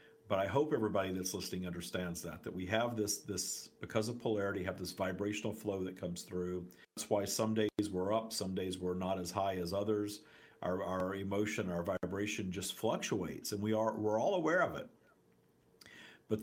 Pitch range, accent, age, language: 90-110 Hz, American, 50-69, English